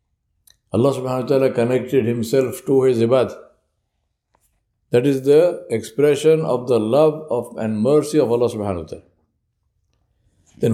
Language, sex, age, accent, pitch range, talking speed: English, male, 60-79, Indian, 120-160 Hz, 140 wpm